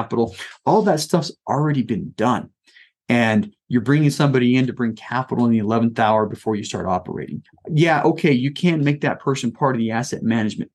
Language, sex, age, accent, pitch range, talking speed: English, male, 30-49, American, 120-155 Hz, 195 wpm